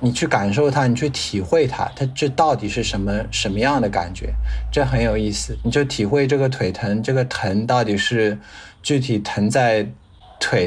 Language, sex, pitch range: Chinese, male, 105-135 Hz